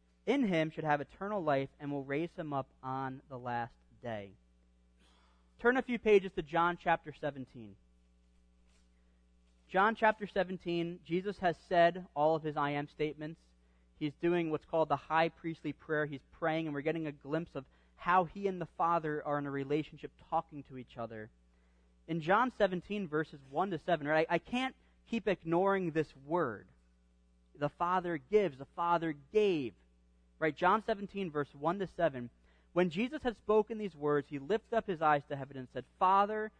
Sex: male